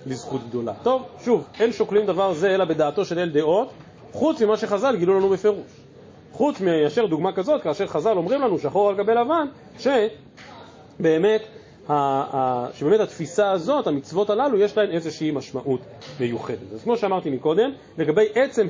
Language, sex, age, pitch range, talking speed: Hebrew, male, 40-59, 150-225 Hz, 165 wpm